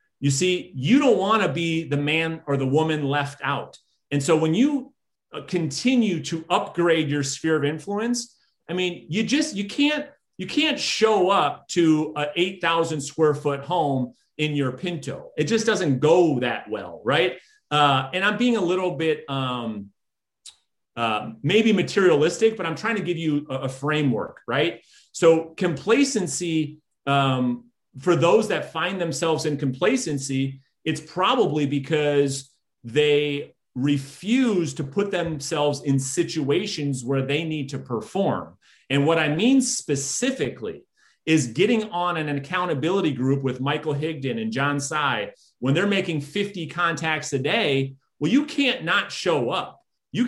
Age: 30-49